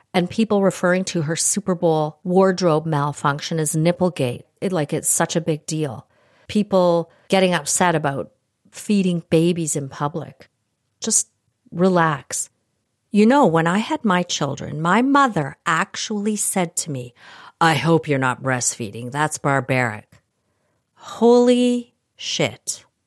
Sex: female